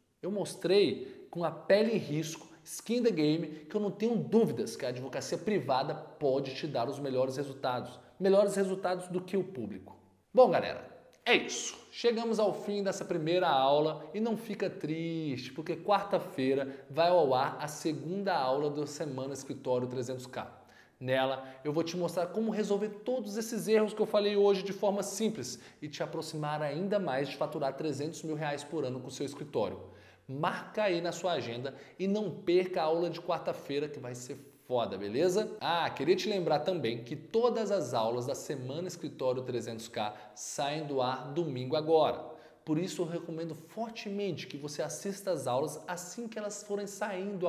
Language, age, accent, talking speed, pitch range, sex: Portuguese, 20-39, Brazilian, 175 wpm, 140-195 Hz, male